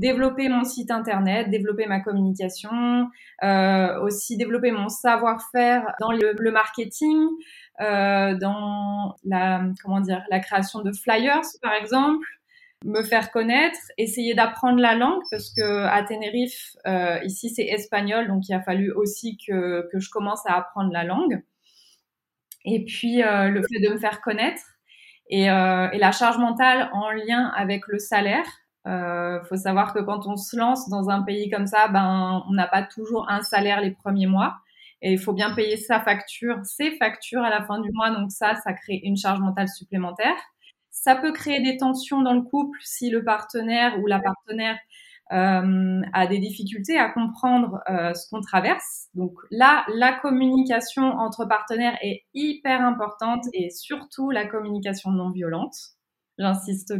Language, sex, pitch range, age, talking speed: French, female, 195-245 Hz, 20-39, 170 wpm